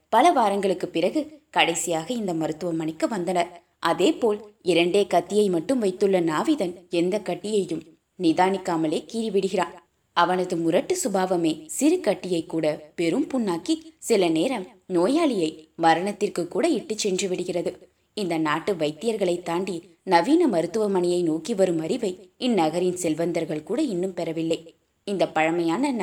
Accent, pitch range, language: native, 165-210 Hz, Tamil